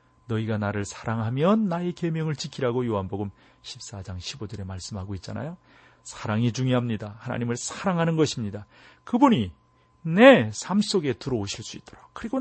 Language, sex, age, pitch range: Korean, male, 40-59, 110-145 Hz